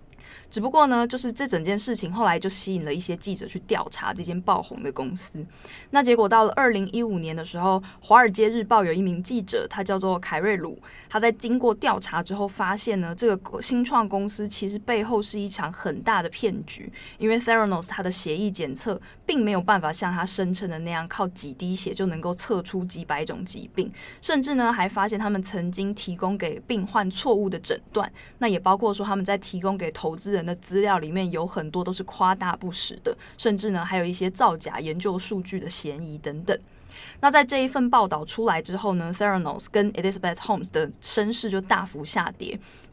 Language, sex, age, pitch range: Chinese, female, 20-39, 175-220 Hz